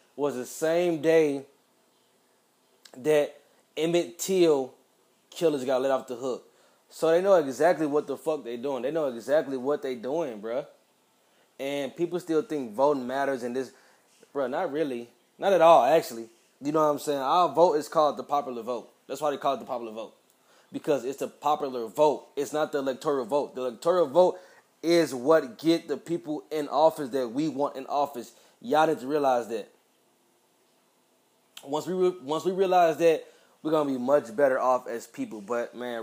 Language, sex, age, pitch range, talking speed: English, male, 20-39, 130-150 Hz, 185 wpm